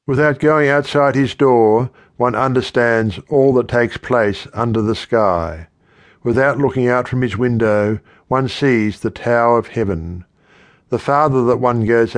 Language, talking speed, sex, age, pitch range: English, 155 wpm, male, 60-79, 105-130 Hz